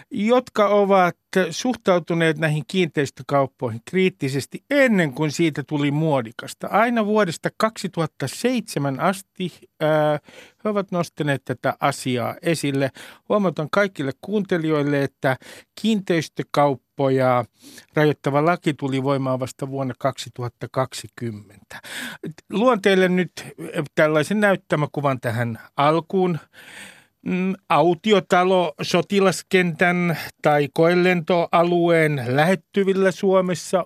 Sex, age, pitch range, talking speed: male, 50-69, 140-190 Hz, 80 wpm